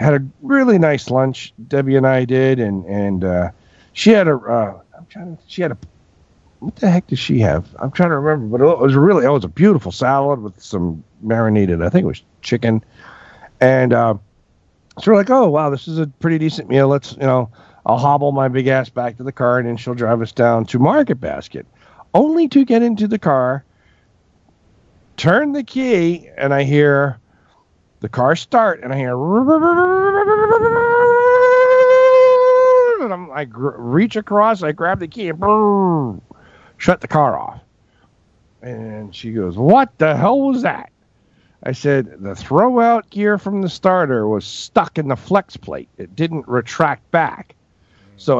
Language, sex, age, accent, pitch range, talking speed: English, male, 50-69, American, 115-190 Hz, 175 wpm